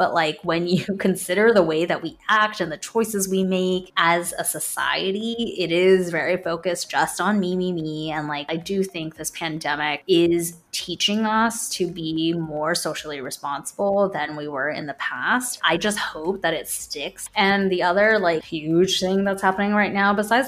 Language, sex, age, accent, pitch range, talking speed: English, female, 20-39, American, 155-190 Hz, 190 wpm